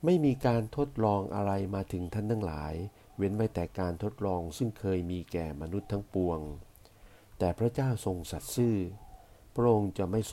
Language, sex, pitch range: Thai, male, 90-110 Hz